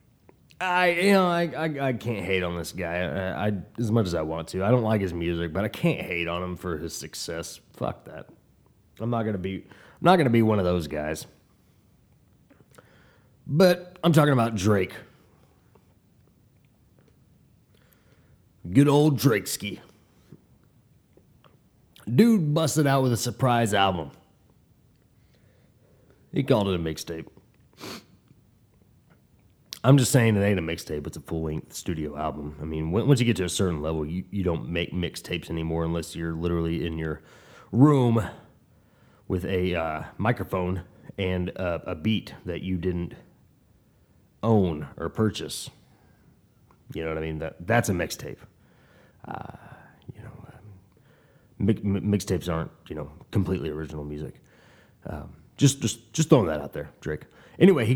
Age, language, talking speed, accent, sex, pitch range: 30-49, English, 155 wpm, American, male, 85-120 Hz